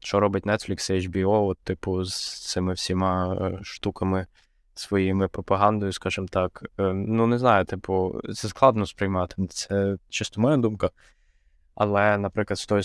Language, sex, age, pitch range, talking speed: Ukrainian, male, 20-39, 95-110 Hz, 145 wpm